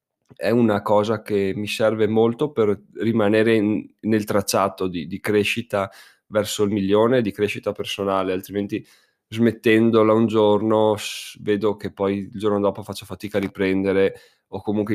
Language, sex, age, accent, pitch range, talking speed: Italian, male, 20-39, native, 95-110 Hz, 145 wpm